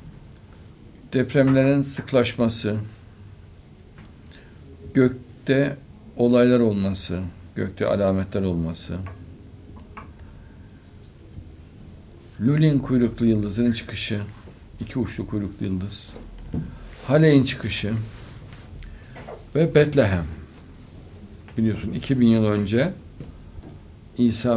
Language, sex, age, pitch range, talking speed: Turkish, male, 60-79, 95-120 Hz, 60 wpm